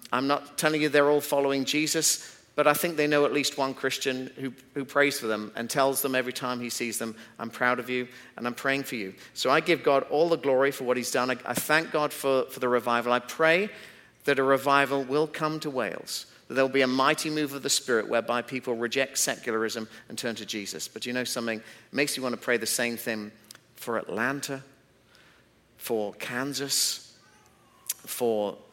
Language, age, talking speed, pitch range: English, 40-59, 215 wpm, 120-140 Hz